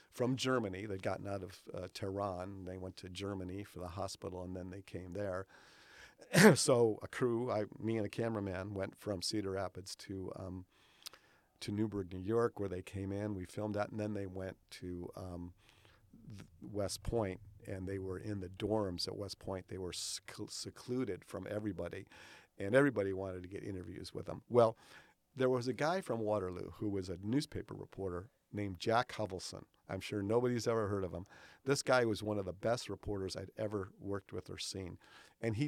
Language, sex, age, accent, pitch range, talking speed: English, male, 50-69, American, 95-110 Hz, 185 wpm